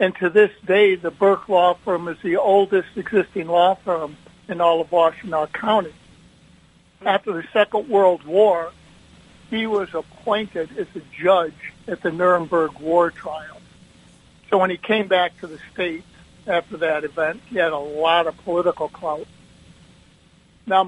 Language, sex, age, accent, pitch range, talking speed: English, male, 60-79, American, 165-195 Hz, 155 wpm